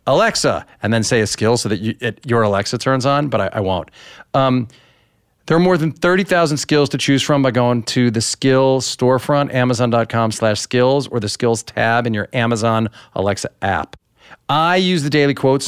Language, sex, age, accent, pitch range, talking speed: English, male, 40-59, American, 115-140 Hz, 195 wpm